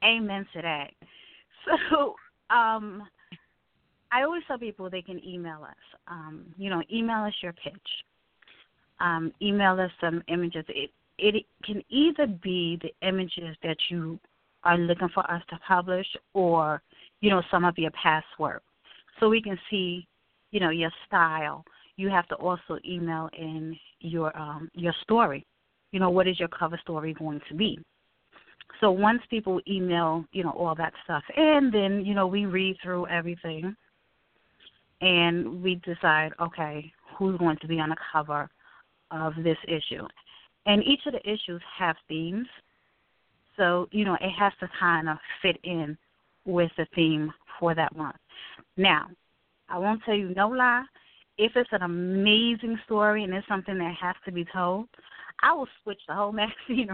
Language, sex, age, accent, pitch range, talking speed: English, female, 30-49, American, 165-205 Hz, 165 wpm